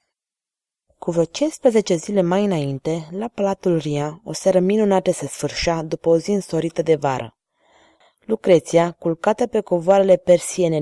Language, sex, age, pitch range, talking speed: Romanian, female, 20-39, 165-210 Hz, 140 wpm